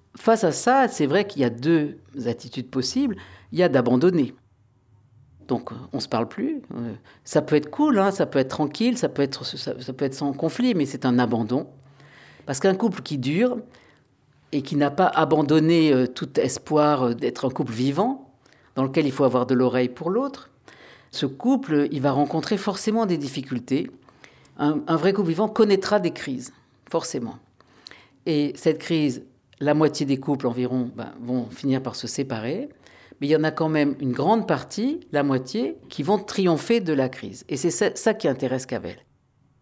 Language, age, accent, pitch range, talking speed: French, 50-69, French, 130-185 Hz, 190 wpm